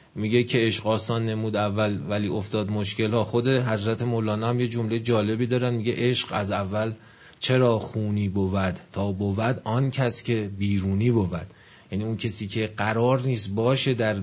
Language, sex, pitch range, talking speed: Persian, male, 105-130 Hz, 165 wpm